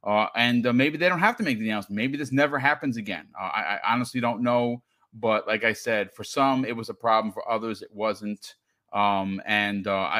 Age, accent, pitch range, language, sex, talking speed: 40-59, American, 110-140 Hz, English, male, 230 wpm